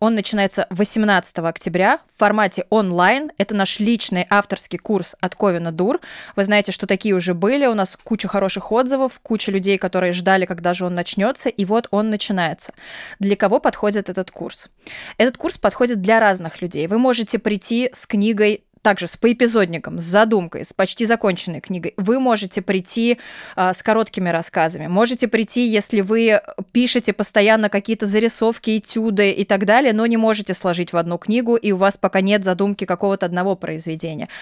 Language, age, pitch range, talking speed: Russian, 20-39, 190-225 Hz, 170 wpm